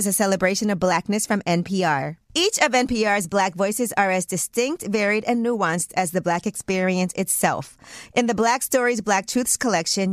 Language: English